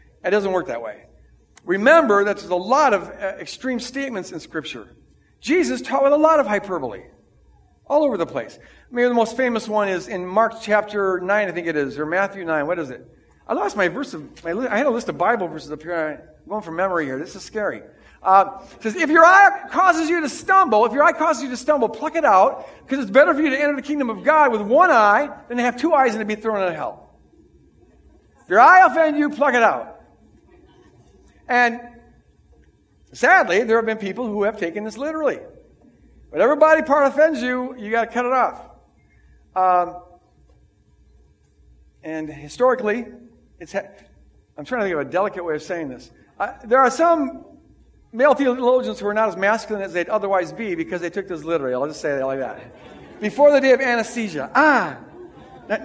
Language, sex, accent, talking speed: English, male, American, 205 wpm